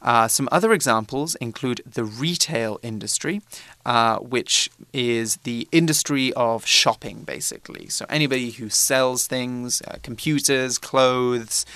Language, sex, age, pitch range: Chinese, male, 20-39, 115-135 Hz